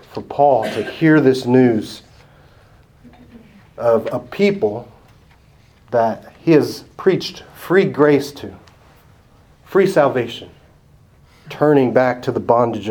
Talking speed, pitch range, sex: 100 wpm, 120-145 Hz, male